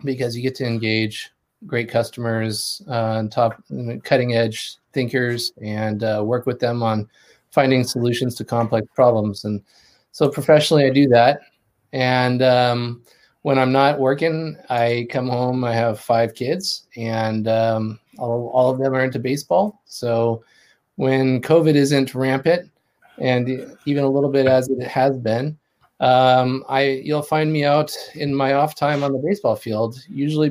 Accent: American